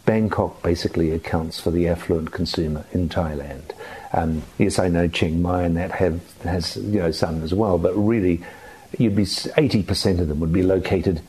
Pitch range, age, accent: 85-110 Hz, 50-69, British